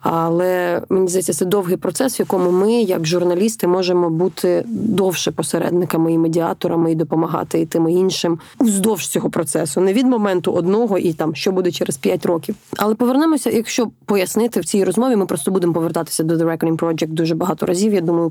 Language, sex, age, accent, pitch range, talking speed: Ukrainian, female, 20-39, native, 170-195 Hz, 185 wpm